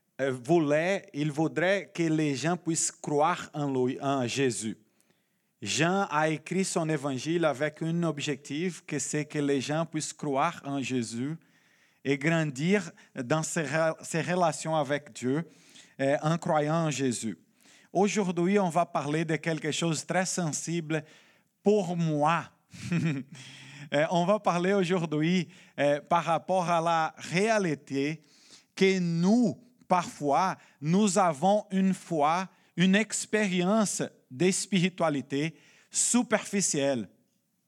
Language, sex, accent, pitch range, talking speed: French, male, Brazilian, 150-195 Hz, 120 wpm